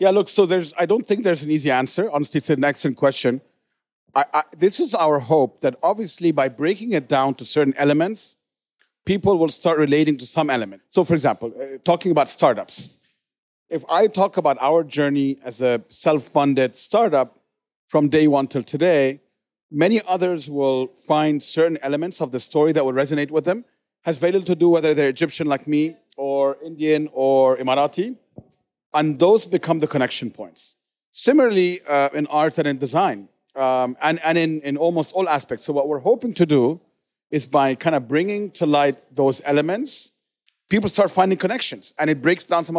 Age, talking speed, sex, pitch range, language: 40-59, 185 wpm, male, 140-175 Hz, English